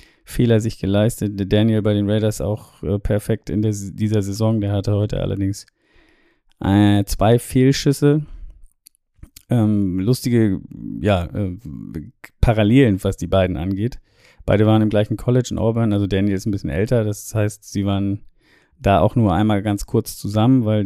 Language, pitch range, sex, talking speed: German, 100-110 Hz, male, 160 wpm